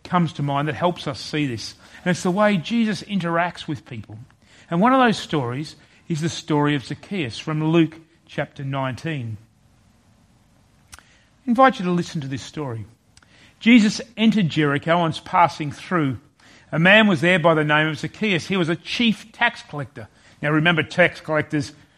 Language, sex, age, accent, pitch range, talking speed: English, male, 40-59, Australian, 125-180 Hz, 175 wpm